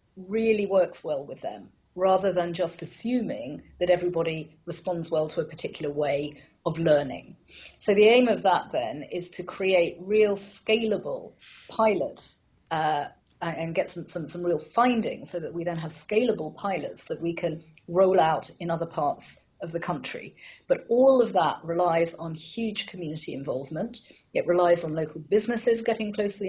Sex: female